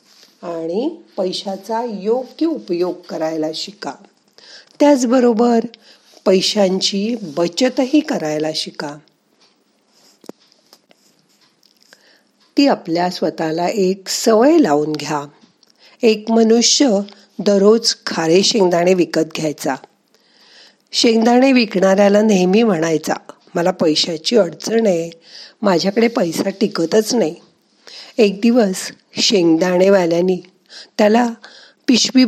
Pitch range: 175-230 Hz